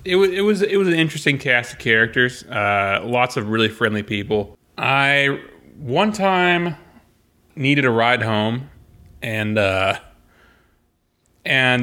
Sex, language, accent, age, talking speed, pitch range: male, English, American, 30-49, 135 wpm, 105-135 Hz